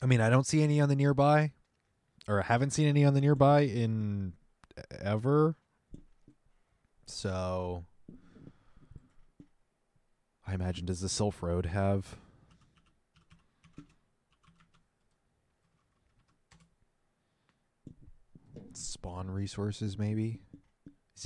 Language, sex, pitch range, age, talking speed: English, male, 85-110 Hz, 20-39, 90 wpm